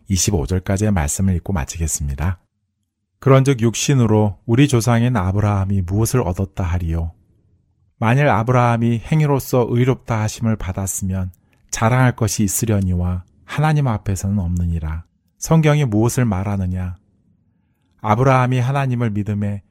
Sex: male